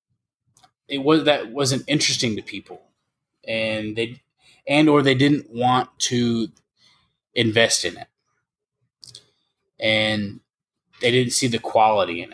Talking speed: 120 wpm